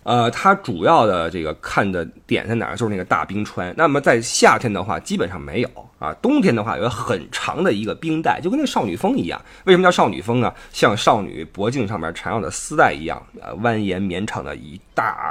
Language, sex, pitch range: Chinese, male, 105-160 Hz